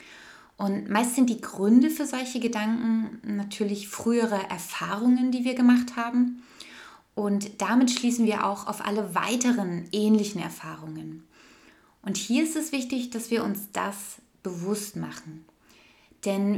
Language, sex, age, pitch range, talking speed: German, female, 20-39, 190-235 Hz, 135 wpm